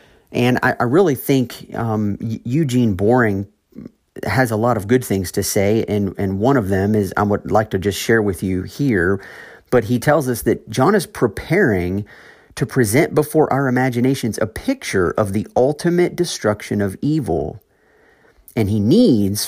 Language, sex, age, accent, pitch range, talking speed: English, male, 40-59, American, 100-125 Hz, 170 wpm